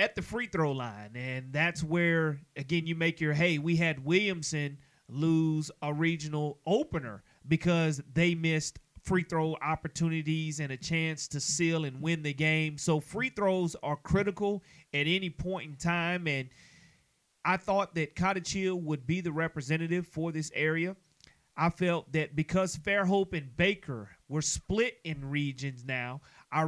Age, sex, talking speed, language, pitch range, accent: 30-49, male, 160 wpm, English, 150-180 Hz, American